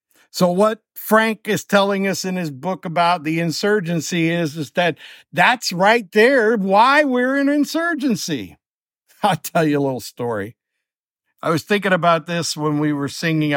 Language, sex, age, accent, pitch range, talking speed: English, male, 60-79, American, 140-195 Hz, 165 wpm